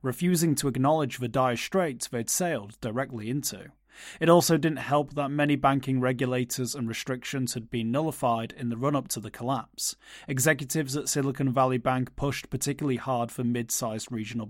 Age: 30-49